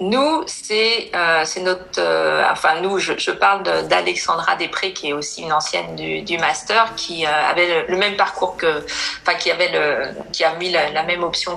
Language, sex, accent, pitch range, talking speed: French, female, French, 160-195 Hz, 215 wpm